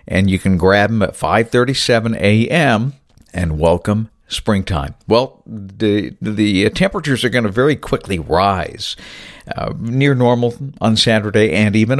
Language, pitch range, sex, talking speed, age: English, 95-125 Hz, male, 140 wpm, 60-79